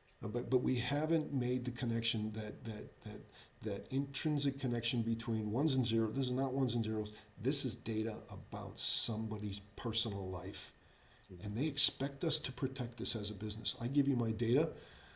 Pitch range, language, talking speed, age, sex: 105-130 Hz, English, 180 wpm, 40-59, male